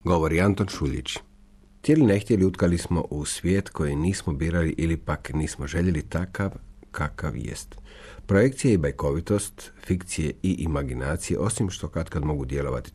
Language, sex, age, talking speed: Croatian, male, 50-69, 140 wpm